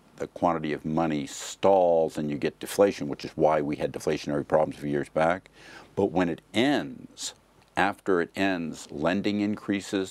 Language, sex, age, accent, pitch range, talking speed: English, male, 50-69, American, 80-95 Hz, 165 wpm